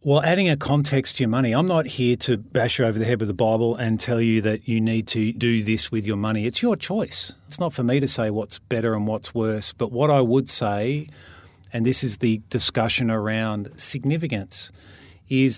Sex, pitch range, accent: male, 110-140 Hz, Australian